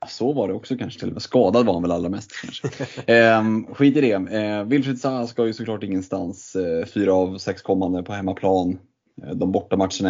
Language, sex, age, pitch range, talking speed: Swedish, male, 20-39, 95-115 Hz, 215 wpm